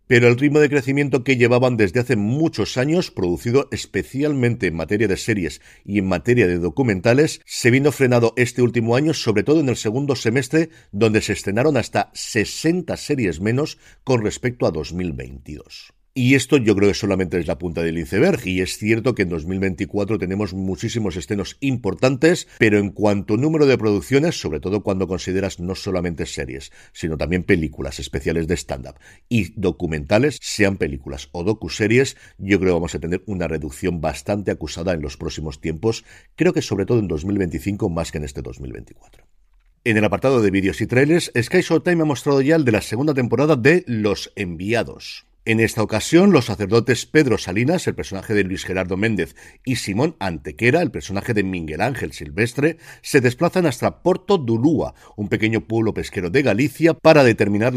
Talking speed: 180 wpm